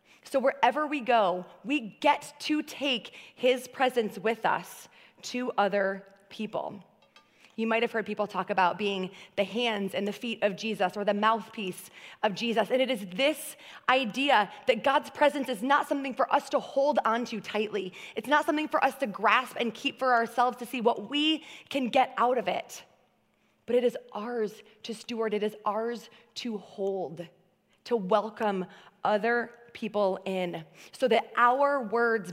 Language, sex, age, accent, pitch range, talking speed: English, female, 20-39, American, 195-245 Hz, 175 wpm